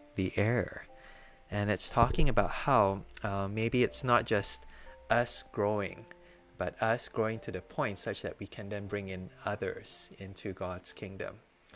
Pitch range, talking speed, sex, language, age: 95-115 Hz, 160 wpm, male, English, 20-39